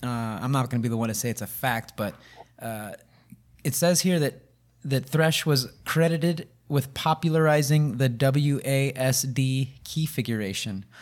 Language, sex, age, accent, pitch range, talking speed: English, male, 20-39, American, 120-145 Hz, 160 wpm